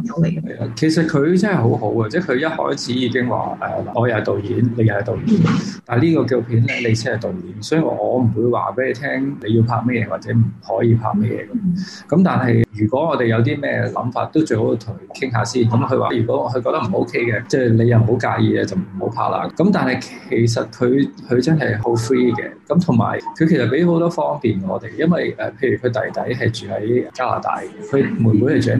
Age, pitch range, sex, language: 20-39, 115-155 Hz, male, Chinese